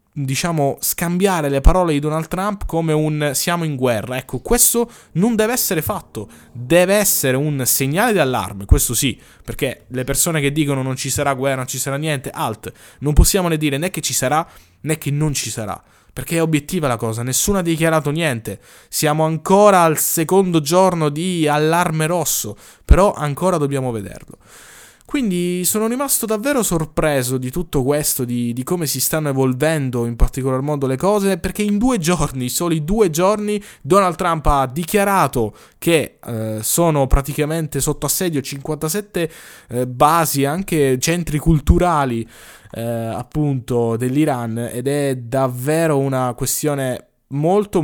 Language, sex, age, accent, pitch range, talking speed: Italian, male, 20-39, native, 130-170 Hz, 155 wpm